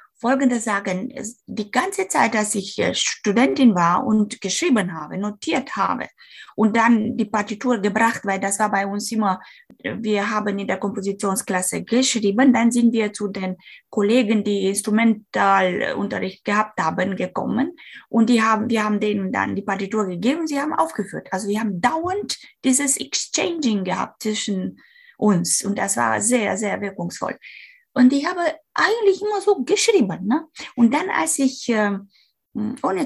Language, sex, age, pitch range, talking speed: German, female, 20-39, 200-260 Hz, 155 wpm